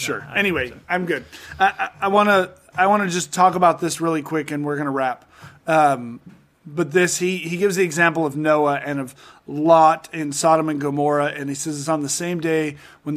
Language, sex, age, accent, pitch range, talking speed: English, male, 30-49, American, 140-170 Hz, 220 wpm